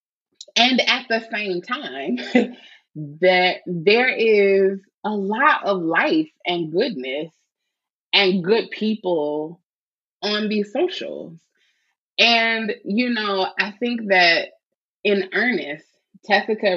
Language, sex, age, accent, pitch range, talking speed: English, female, 20-39, American, 160-205 Hz, 105 wpm